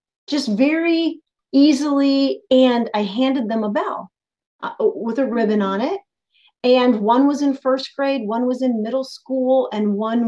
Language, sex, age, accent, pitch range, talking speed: English, female, 40-59, American, 210-270 Hz, 165 wpm